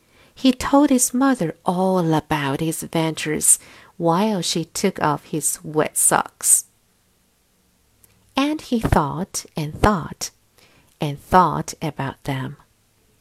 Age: 50-69